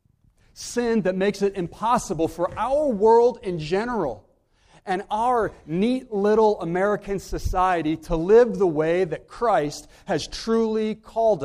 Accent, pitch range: American, 115-195 Hz